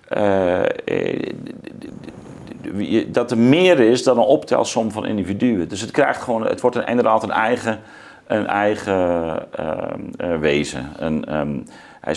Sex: male